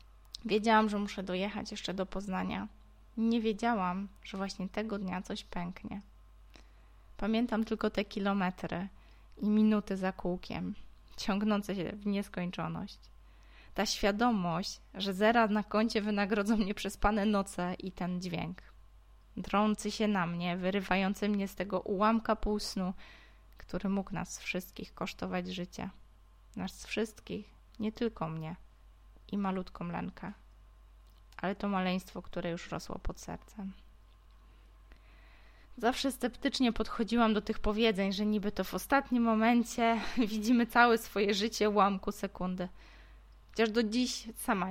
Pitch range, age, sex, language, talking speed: 180-215 Hz, 20-39, female, Polish, 125 wpm